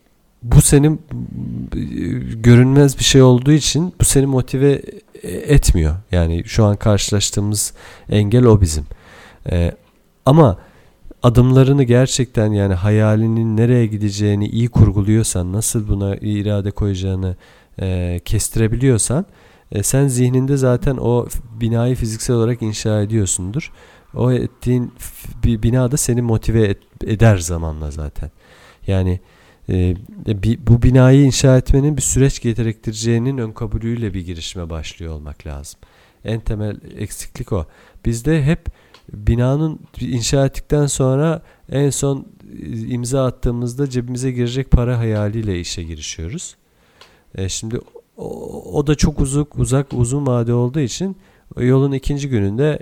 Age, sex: 40-59, male